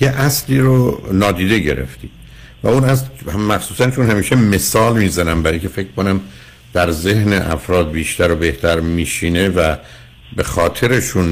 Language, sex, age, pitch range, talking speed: Persian, male, 60-79, 85-125 Hz, 150 wpm